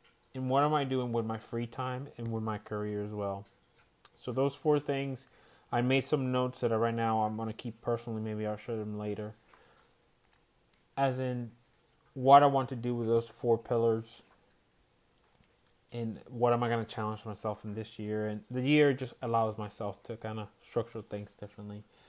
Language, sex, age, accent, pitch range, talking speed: English, male, 30-49, American, 110-130 Hz, 195 wpm